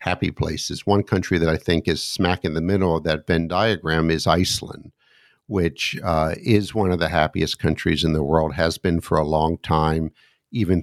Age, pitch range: 50-69, 80-105 Hz